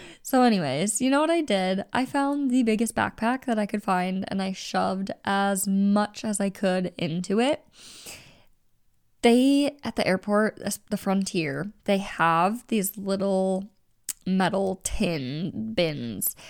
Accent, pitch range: American, 180-235 Hz